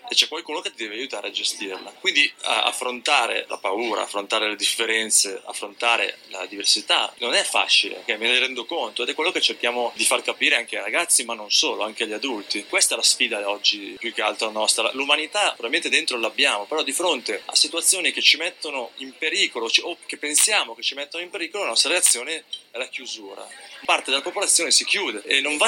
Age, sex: 30-49, male